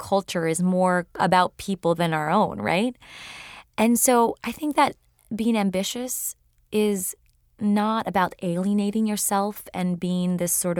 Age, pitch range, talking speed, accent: 20-39, 170-200 Hz, 140 wpm, American